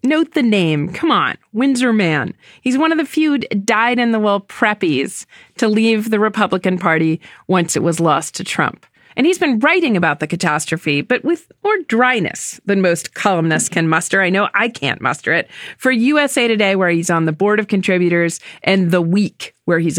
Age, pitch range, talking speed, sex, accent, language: 40-59, 180-250 Hz, 195 wpm, female, American, English